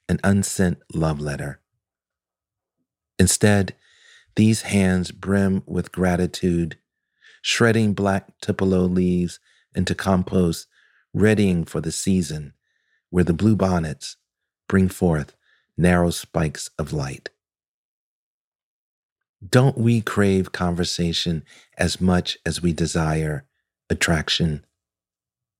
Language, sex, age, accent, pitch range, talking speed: English, male, 40-59, American, 85-100 Hz, 95 wpm